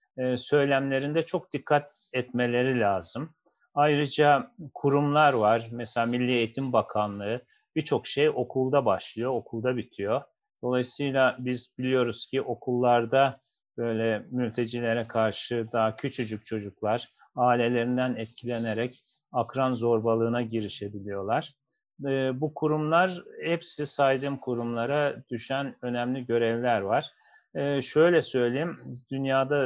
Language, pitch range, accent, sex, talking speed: Turkish, 115-140 Hz, native, male, 95 wpm